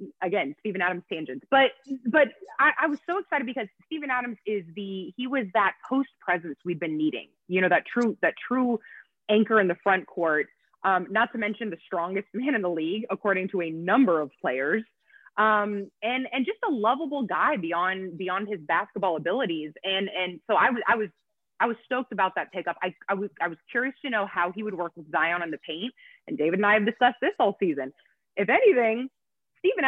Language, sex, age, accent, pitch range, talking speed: English, female, 20-39, American, 180-265 Hz, 210 wpm